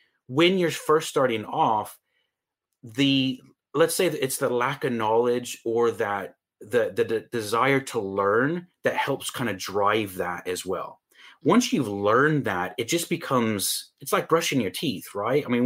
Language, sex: English, male